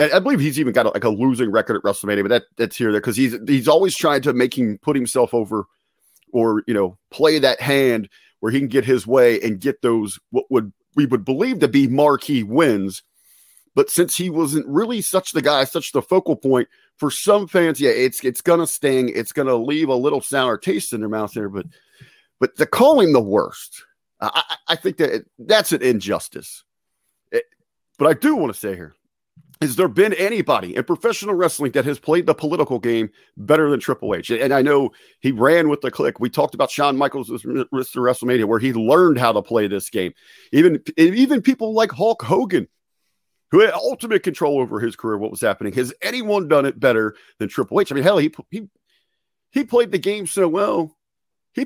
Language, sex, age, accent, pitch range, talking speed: English, male, 40-59, American, 125-195 Hz, 210 wpm